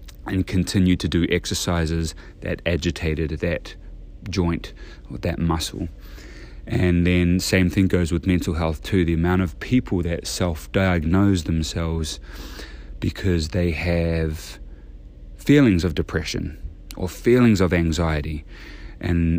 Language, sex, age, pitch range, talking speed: English, male, 30-49, 75-90 Hz, 120 wpm